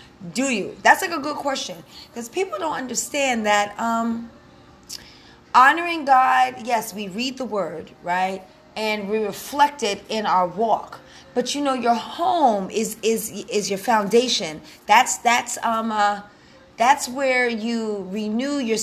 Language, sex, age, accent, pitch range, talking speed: English, female, 30-49, American, 215-275 Hz, 150 wpm